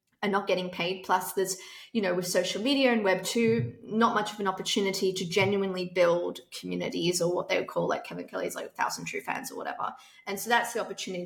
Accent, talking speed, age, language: Australian, 225 wpm, 20-39, English